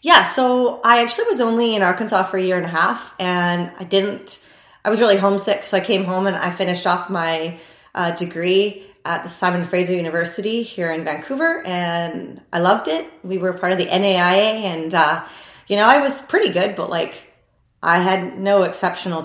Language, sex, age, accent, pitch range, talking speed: English, female, 30-49, American, 165-195 Hz, 200 wpm